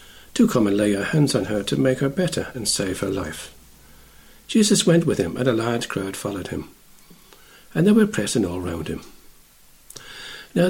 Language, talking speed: English, 190 wpm